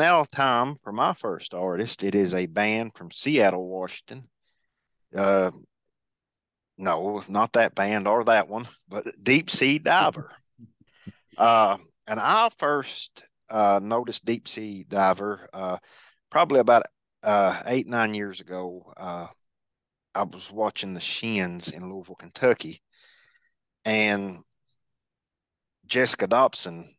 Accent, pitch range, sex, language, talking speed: American, 95-115 Hz, male, English, 120 wpm